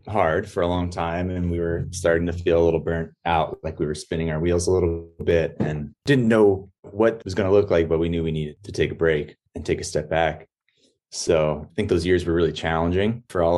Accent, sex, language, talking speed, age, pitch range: American, male, English, 250 wpm, 30-49, 80-95 Hz